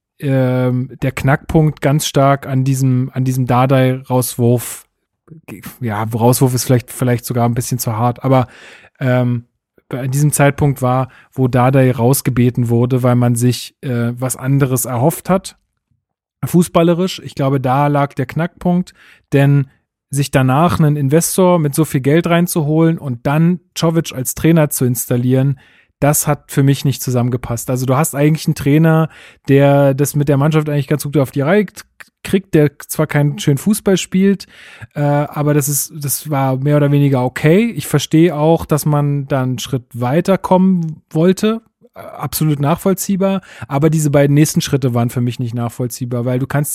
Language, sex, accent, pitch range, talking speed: German, male, German, 130-160 Hz, 160 wpm